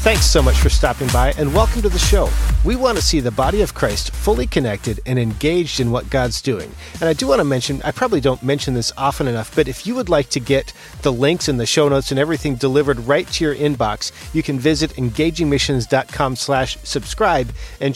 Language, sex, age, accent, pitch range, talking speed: English, male, 40-59, American, 120-150 Hz, 225 wpm